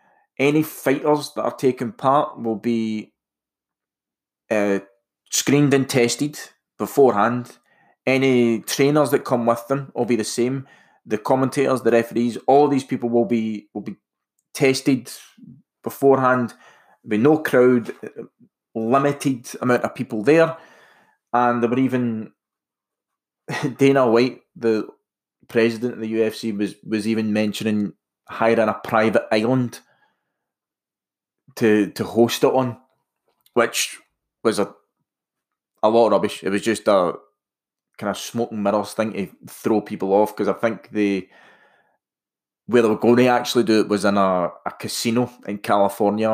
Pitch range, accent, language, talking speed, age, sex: 110-130 Hz, British, English, 140 wpm, 20-39, male